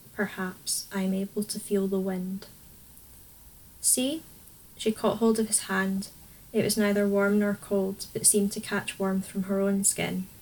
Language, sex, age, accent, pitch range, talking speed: English, female, 10-29, British, 190-210 Hz, 175 wpm